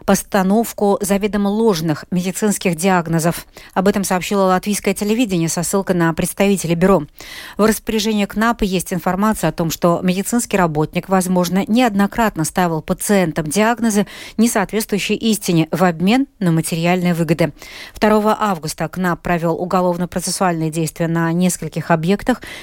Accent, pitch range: native, 175-215 Hz